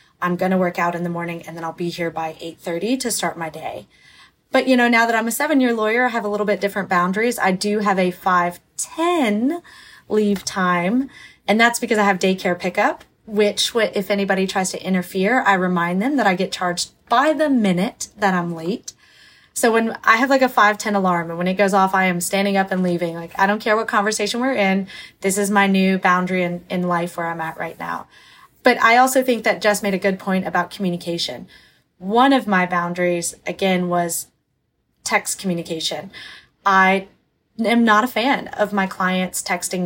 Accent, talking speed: American, 210 wpm